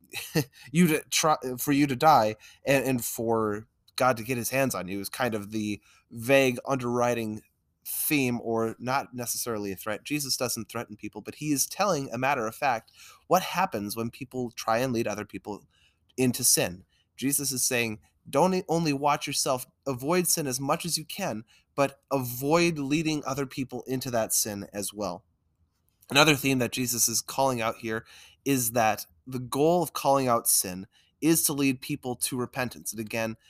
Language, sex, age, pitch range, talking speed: English, male, 20-39, 110-140 Hz, 180 wpm